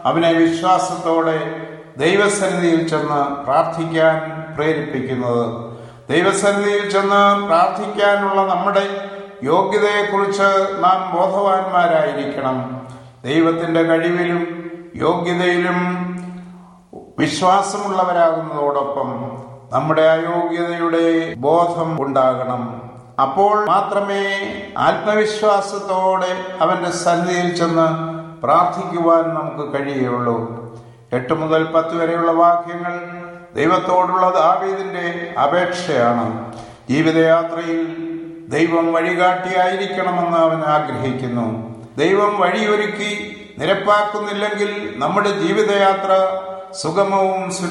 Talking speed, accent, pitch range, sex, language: 65 wpm, Indian, 155-190 Hz, male, English